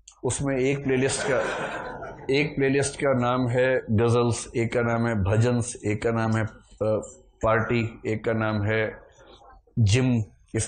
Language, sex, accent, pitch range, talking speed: Hindi, male, native, 105-135 Hz, 145 wpm